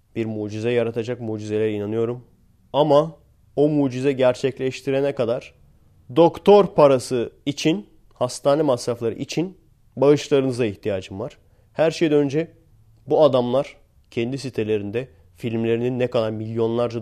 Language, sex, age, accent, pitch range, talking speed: Turkish, male, 30-49, native, 105-145 Hz, 105 wpm